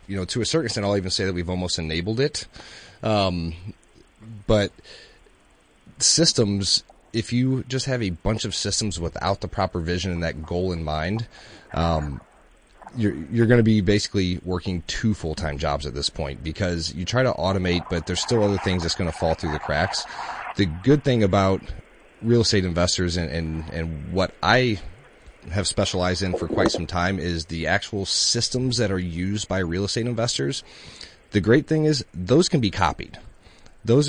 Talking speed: 180 wpm